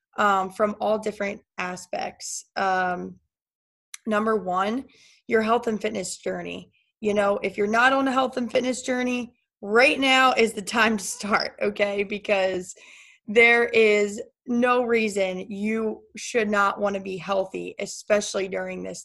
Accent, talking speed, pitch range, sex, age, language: American, 150 wpm, 190-235 Hz, female, 20-39, English